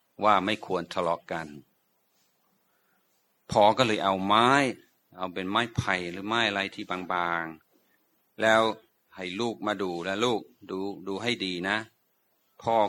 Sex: male